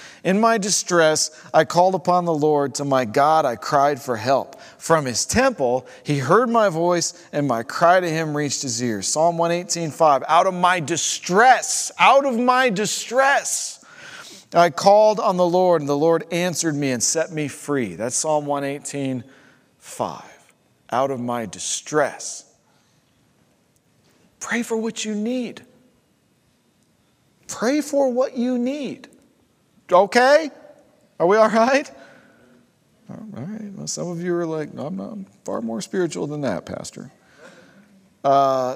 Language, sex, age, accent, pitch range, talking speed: English, male, 40-59, American, 130-200 Hz, 140 wpm